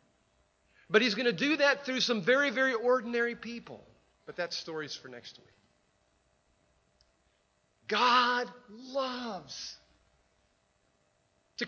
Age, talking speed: 40-59, 115 wpm